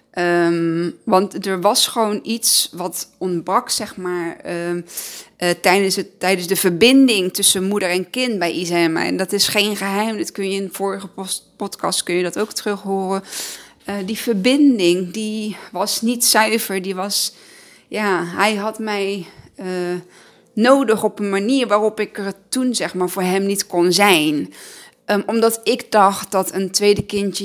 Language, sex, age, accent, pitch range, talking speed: Dutch, female, 20-39, Dutch, 180-215 Hz, 170 wpm